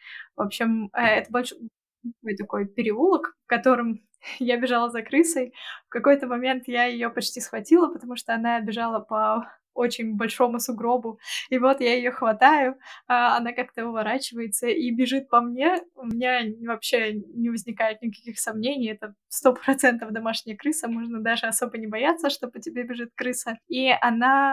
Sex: female